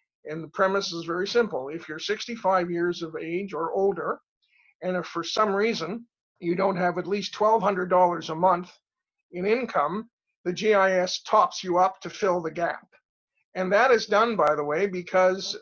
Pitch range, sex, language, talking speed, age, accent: 170-210 Hz, male, English, 175 wpm, 50-69, American